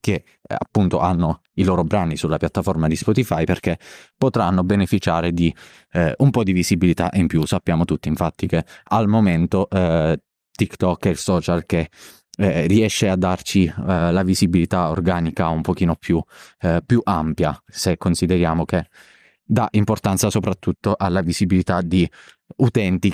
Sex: male